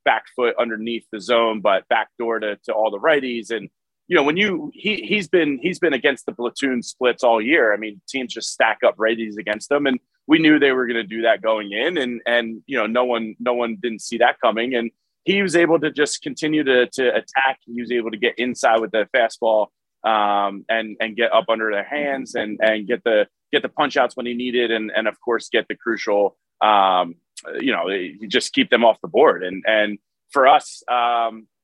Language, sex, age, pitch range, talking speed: English, male, 30-49, 110-135 Hz, 230 wpm